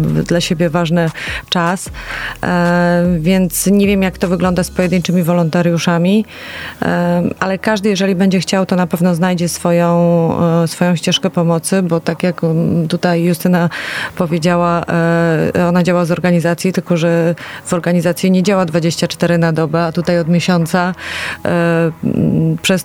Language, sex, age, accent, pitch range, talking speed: Polish, female, 30-49, native, 170-185 Hz, 130 wpm